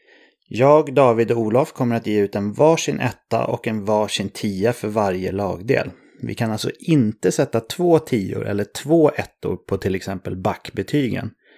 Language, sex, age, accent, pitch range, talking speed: English, male, 30-49, Swedish, 105-135 Hz, 165 wpm